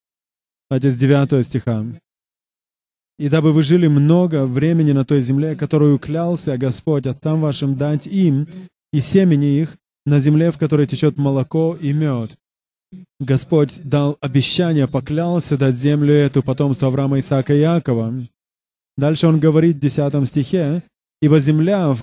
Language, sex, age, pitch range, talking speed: English, male, 20-39, 140-160 Hz, 145 wpm